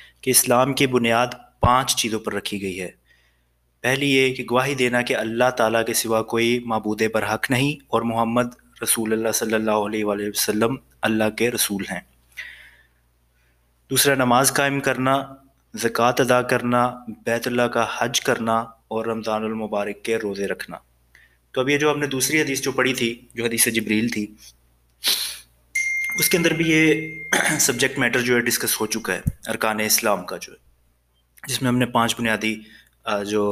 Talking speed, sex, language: 170 wpm, male, Urdu